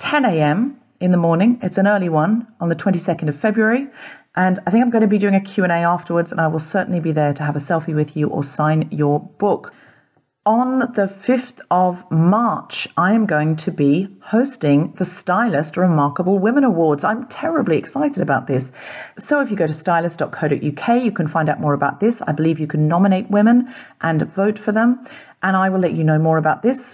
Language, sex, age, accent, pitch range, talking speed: English, female, 40-59, British, 155-210 Hz, 210 wpm